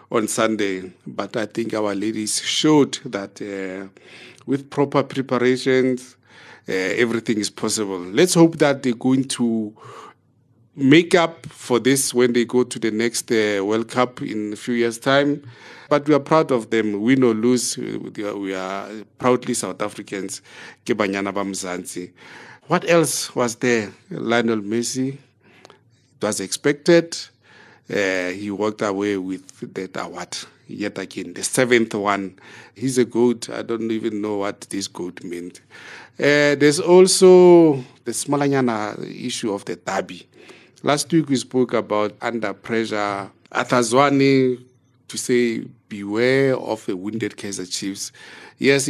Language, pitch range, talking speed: English, 105-130 Hz, 135 wpm